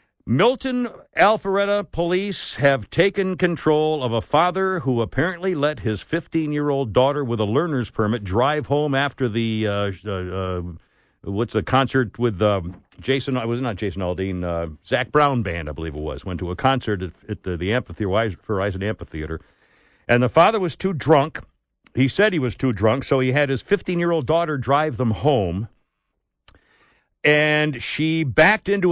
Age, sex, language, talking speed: 60-79, male, English, 170 wpm